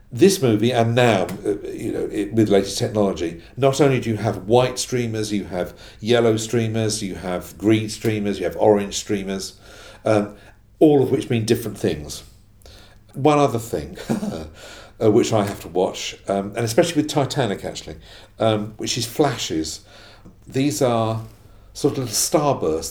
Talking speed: 155 wpm